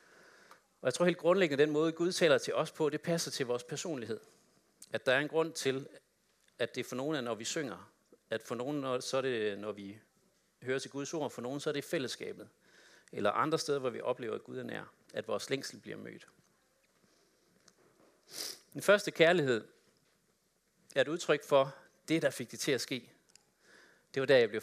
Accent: native